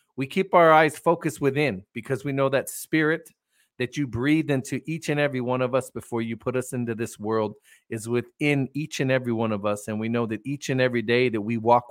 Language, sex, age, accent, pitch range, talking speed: English, male, 40-59, American, 110-135 Hz, 235 wpm